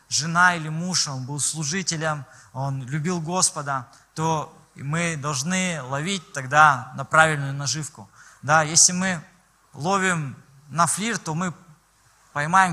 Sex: male